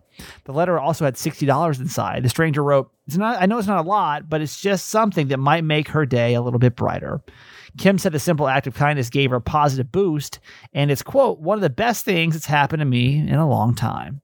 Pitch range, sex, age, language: 130-170 Hz, male, 30-49, English